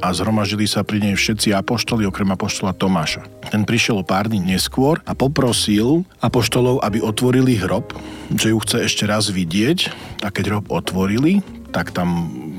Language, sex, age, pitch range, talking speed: Slovak, male, 40-59, 90-105 Hz, 160 wpm